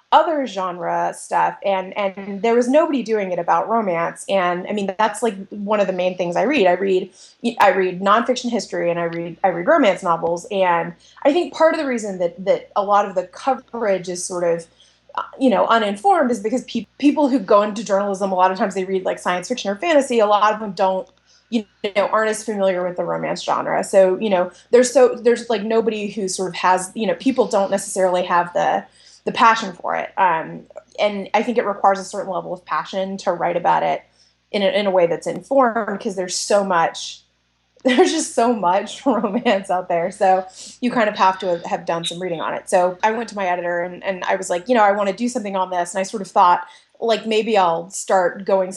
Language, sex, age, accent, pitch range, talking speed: English, female, 20-39, American, 180-230 Hz, 235 wpm